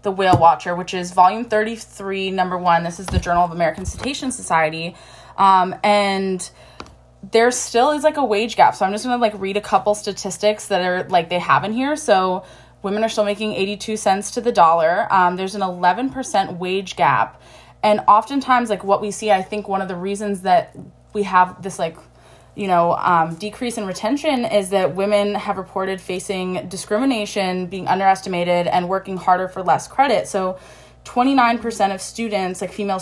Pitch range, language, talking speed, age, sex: 175-210 Hz, English, 190 wpm, 20-39, female